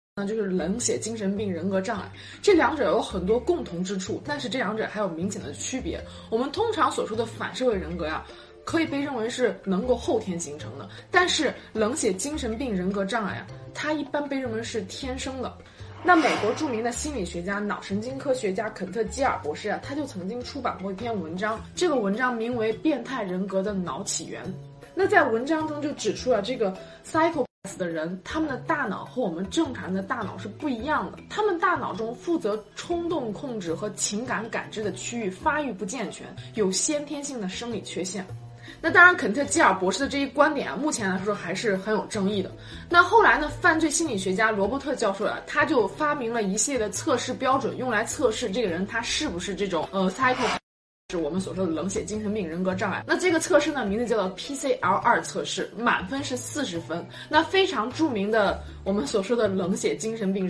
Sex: female